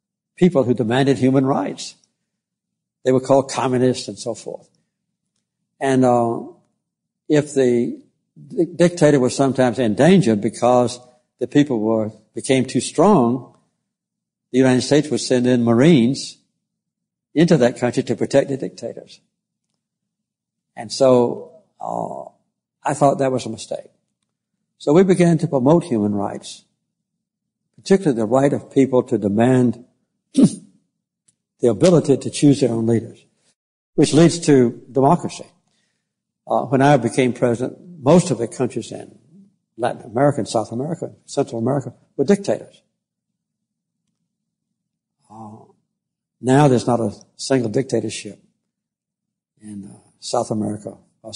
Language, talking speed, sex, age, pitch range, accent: English, 125 wpm, male, 60-79, 120-175 Hz, American